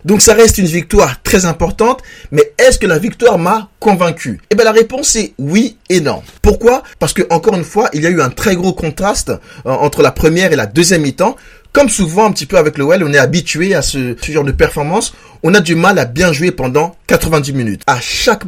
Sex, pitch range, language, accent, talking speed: male, 160-215 Hz, French, French, 235 wpm